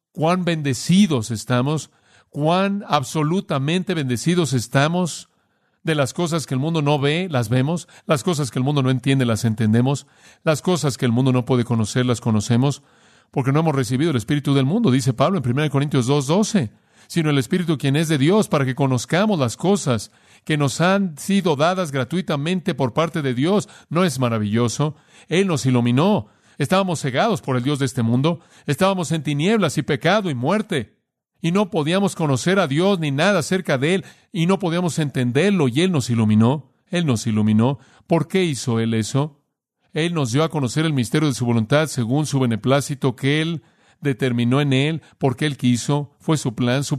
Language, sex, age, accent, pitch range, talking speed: Spanish, male, 40-59, Mexican, 130-165 Hz, 185 wpm